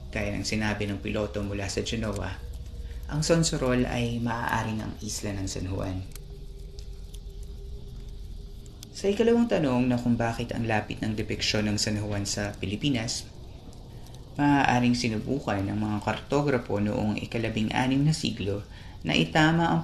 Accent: native